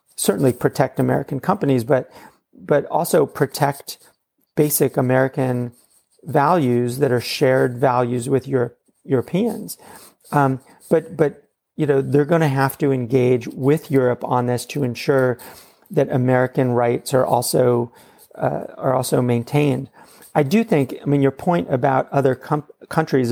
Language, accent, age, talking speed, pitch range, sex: English, American, 40-59, 140 wpm, 125-150 Hz, male